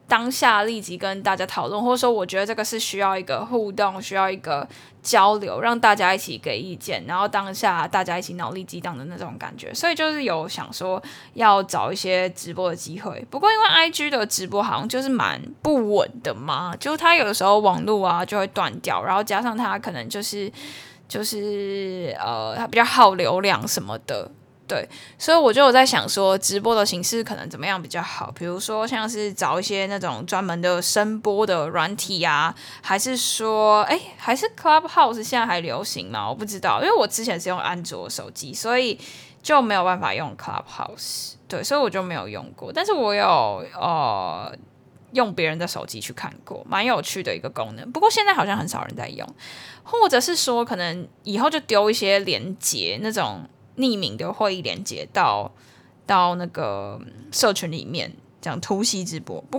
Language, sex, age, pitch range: Chinese, female, 10-29, 185-235 Hz